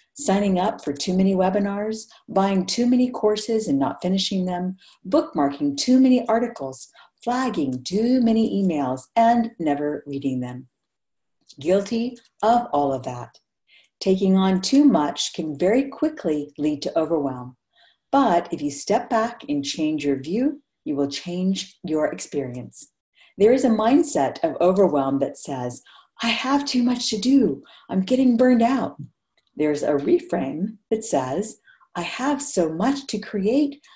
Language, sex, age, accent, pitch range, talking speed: English, female, 50-69, American, 150-250 Hz, 150 wpm